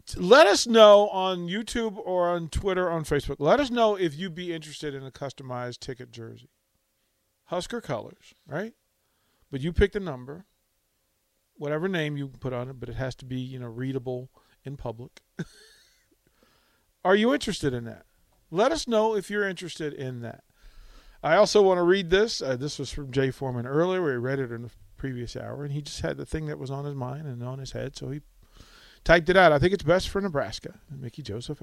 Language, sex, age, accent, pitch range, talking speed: English, male, 40-59, American, 120-160 Hz, 205 wpm